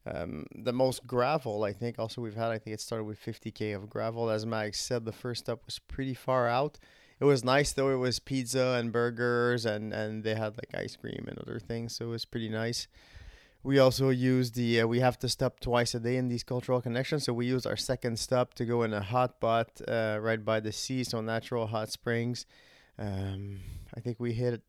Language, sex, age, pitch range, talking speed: French, male, 20-39, 110-130 Hz, 225 wpm